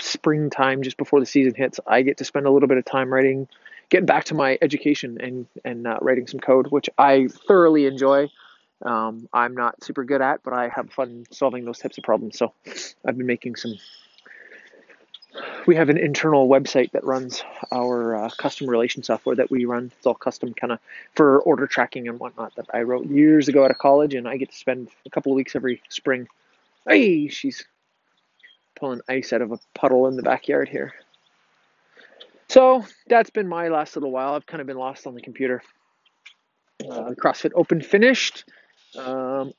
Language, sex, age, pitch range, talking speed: English, male, 20-39, 130-160 Hz, 190 wpm